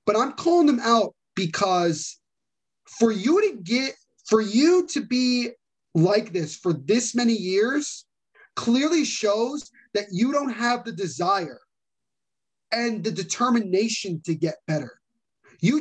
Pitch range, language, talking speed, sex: 190-260 Hz, English, 135 wpm, male